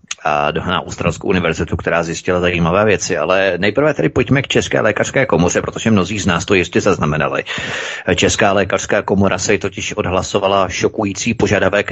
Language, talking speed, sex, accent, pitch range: Czech, 160 wpm, male, native, 95-120 Hz